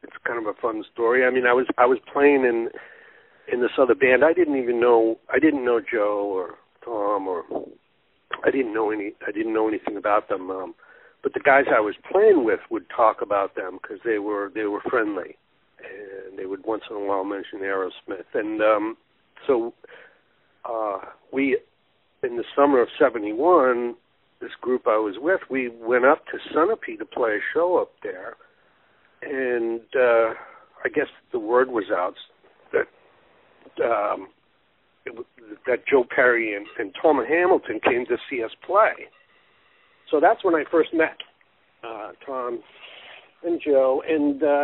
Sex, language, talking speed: male, English, 170 wpm